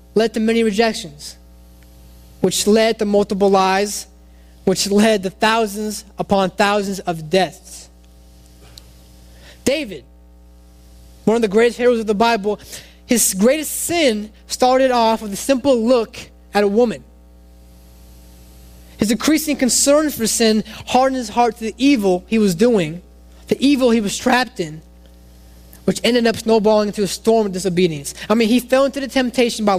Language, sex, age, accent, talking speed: English, male, 20-39, American, 150 wpm